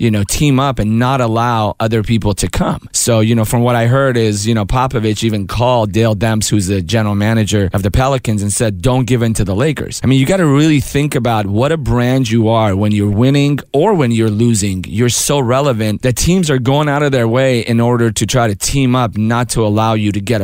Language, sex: English, male